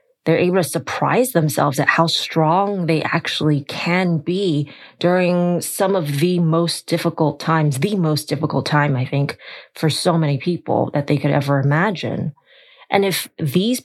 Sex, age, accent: female, 20-39, American